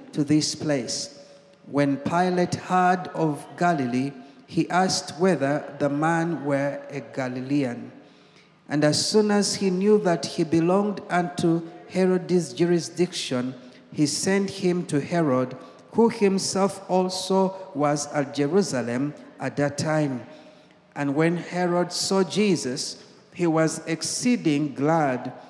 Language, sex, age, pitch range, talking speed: English, male, 60-79, 150-185 Hz, 120 wpm